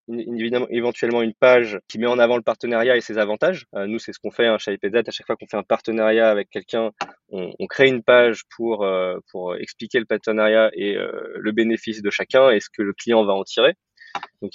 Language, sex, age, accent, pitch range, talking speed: French, male, 20-39, French, 105-125 Hz, 240 wpm